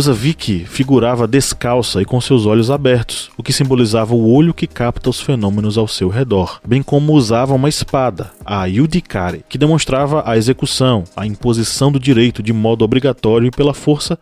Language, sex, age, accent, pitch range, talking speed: Portuguese, male, 20-39, Brazilian, 110-150 Hz, 180 wpm